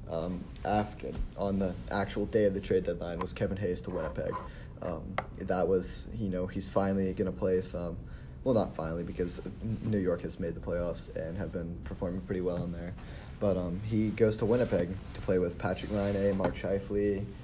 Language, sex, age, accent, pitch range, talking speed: English, male, 20-39, American, 90-100 Hz, 200 wpm